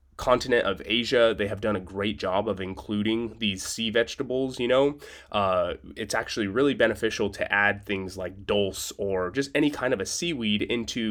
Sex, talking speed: male, 185 wpm